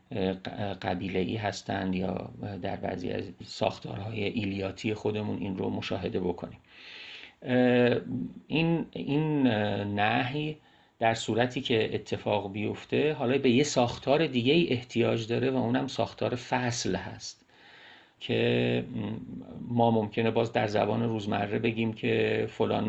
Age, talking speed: 40-59, 120 wpm